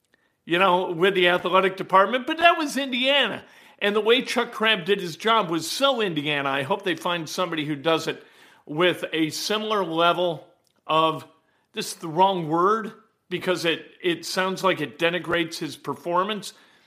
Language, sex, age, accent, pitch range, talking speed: English, male, 50-69, American, 155-195 Hz, 170 wpm